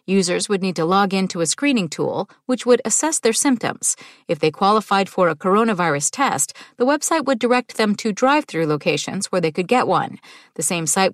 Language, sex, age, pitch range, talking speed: English, female, 40-59, 170-245 Hz, 210 wpm